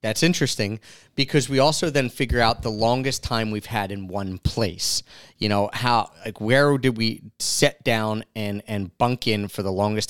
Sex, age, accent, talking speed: male, 30-49, American, 190 wpm